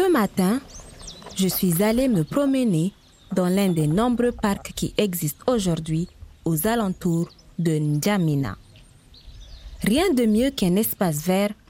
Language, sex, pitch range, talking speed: French, female, 155-215 Hz, 130 wpm